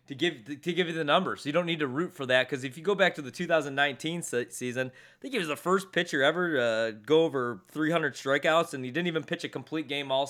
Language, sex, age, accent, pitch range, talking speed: English, male, 30-49, American, 125-165 Hz, 275 wpm